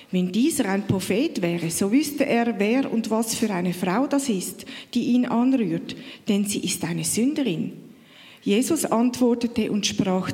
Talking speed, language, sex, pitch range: 165 wpm, German, female, 195-255 Hz